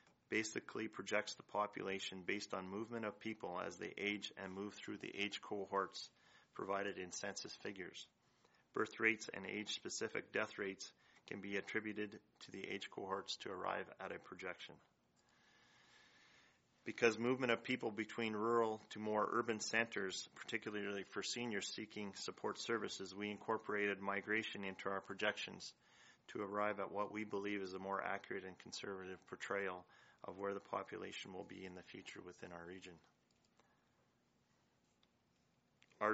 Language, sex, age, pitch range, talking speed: English, male, 30-49, 95-110 Hz, 145 wpm